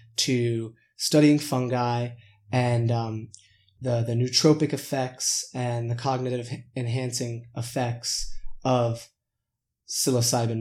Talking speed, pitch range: 90 wpm, 120-135 Hz